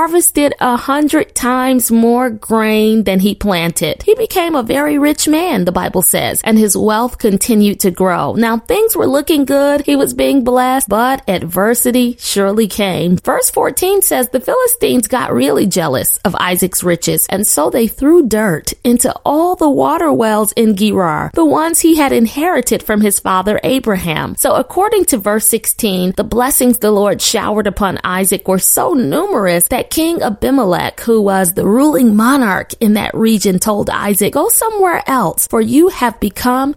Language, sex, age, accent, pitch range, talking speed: English, female, 30-49, American, 205-300 Hz, 170 wpm